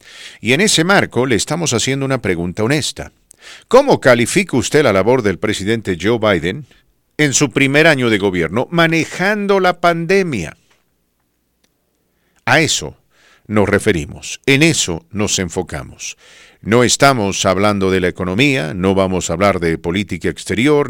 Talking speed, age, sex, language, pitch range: 140 wpm, 50-69, male, English, 90-135 Hz